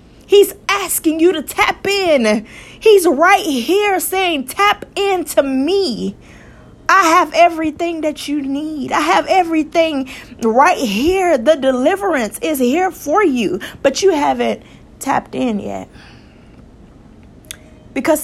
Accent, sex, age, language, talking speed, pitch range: American, female, 20-39, English, 120 wpm, 200-305 Hz